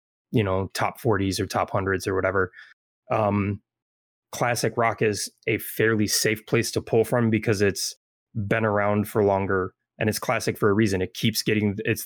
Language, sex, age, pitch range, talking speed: English, male, 20-39, 100-115 Hz, 180 wpm